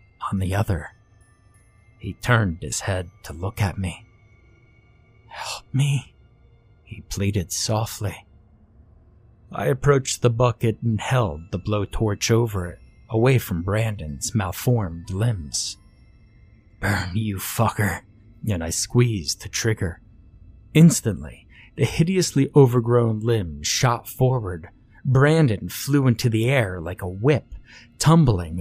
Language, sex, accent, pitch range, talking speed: English, male, American, 100-125 Hz, 115 wpm